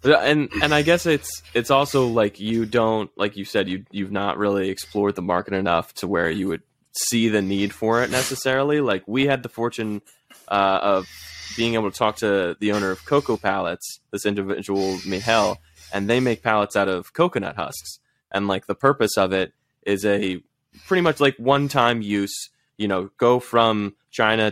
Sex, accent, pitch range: male, American, 95-110 Hz